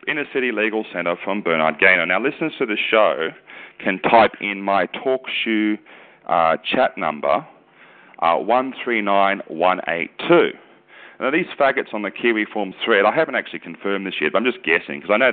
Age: 40-59